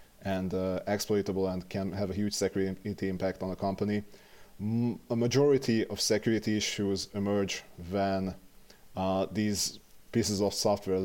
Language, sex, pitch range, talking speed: English, male, 95-105 Hz, 140 wpm